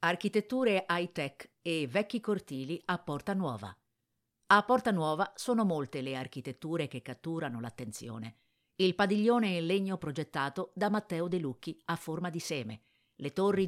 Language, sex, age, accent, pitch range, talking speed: Italian, female, 50-69, native, 145-195 Hz, 145 wpm